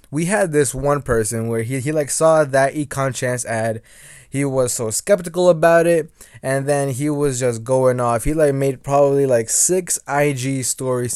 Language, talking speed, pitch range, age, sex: English, 190 wpm, 135-170 Hz, 20-39, male